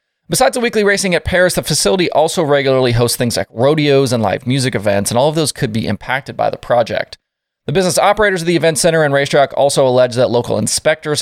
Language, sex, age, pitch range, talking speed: English, male, 20-39, 115-155 Hz, 225 wpm